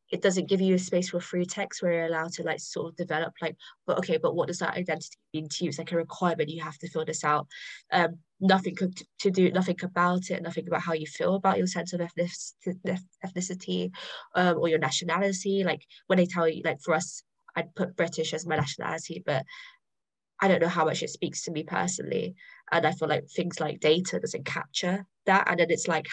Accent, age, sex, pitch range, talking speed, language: British, 20-39, female, 165-190 Hz, 225 wpm, English